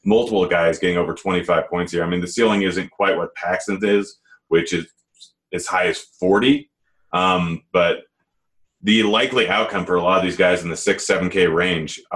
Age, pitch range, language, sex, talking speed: 30-49, 90-110 Hz, English, male, 190 wpm